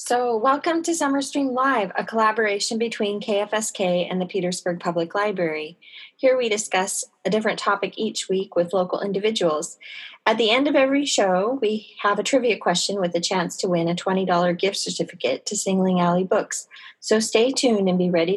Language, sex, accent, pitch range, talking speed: English, female, American, 180-220 Hz, 185 wpm